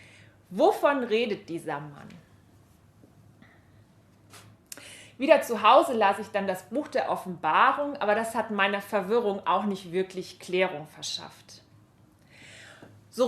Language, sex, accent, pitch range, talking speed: German, female, German, 180-235 Hz, 115 wpm